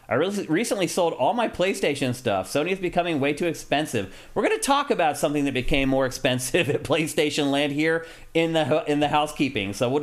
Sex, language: male, English